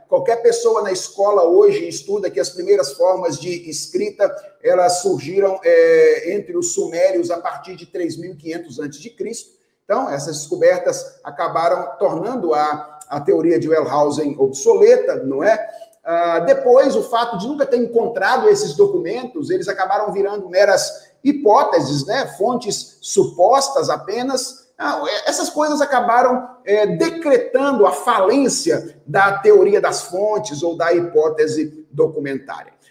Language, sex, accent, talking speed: Portuguese, male, Brazilian, 130 wpm